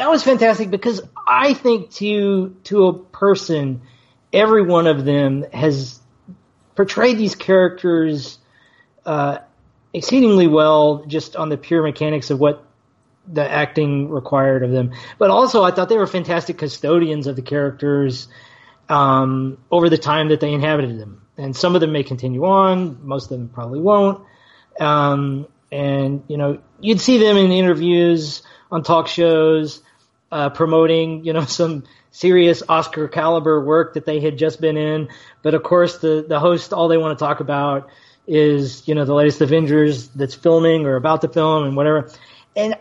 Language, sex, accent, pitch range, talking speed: English, male, American, 140-180 Hz, 165 wpm